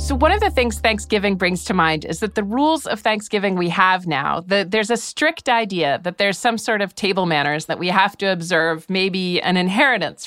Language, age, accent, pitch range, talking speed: English, 40-59, American, 175-220 Hz, 215 wpm